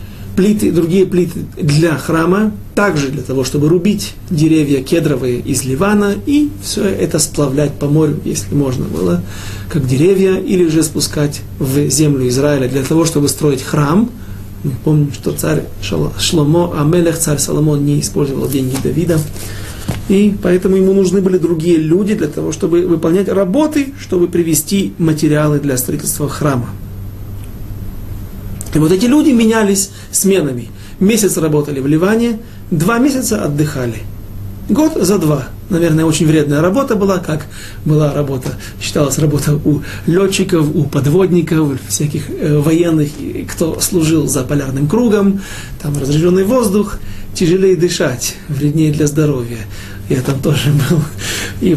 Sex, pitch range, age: male, 130-180 Hz, 40-59